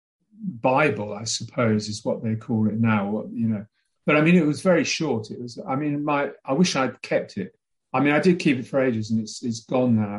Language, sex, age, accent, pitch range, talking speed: English, male, 40-59, British, 110-130 Hz, 245 wpm